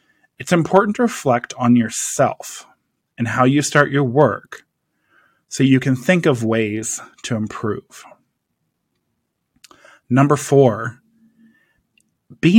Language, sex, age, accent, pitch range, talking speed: English, male, 20-39, American, 120-150 Hz, 110 wpm